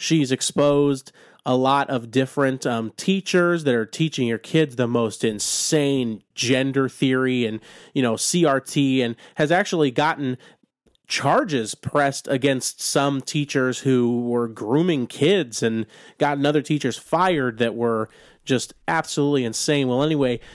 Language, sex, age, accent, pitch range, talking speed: English, male, 30-49, American, 130-150 Hz, 145 wpm